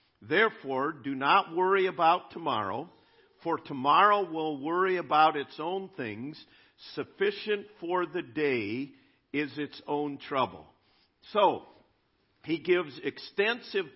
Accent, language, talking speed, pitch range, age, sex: American, English, 110 wpm, 145-215 Hz, 50-69, male